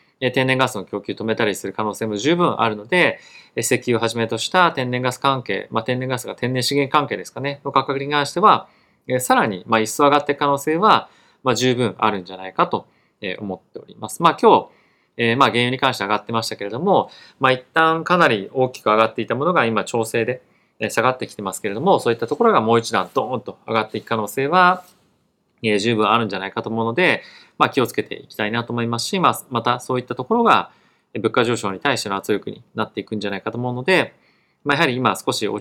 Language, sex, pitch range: Japanese, male, 110-145 Hz